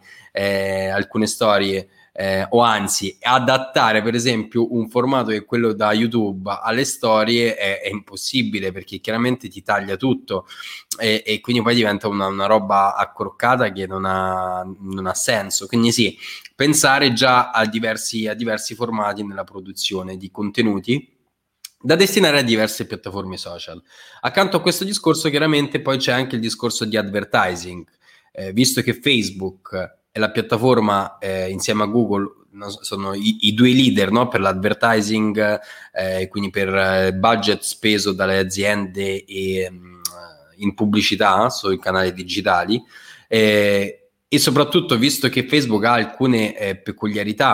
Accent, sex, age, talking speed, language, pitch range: native, male, 20-39, 140 wpm, Italian, 100-115 Hz